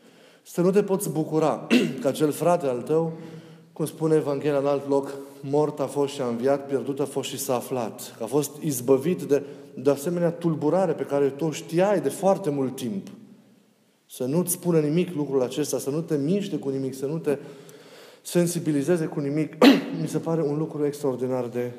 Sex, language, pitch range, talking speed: male, Romanian, 140-170 Hz, 190 wpm